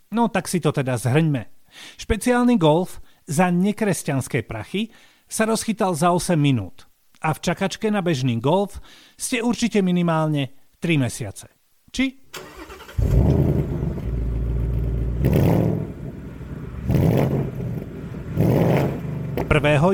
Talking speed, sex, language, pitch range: 85 wpm, male, Slovak, 140-200 Hz